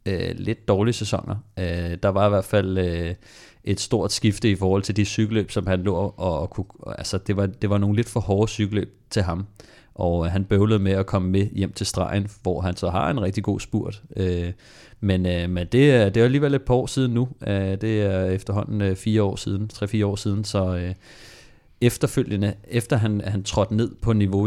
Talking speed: 195 wpm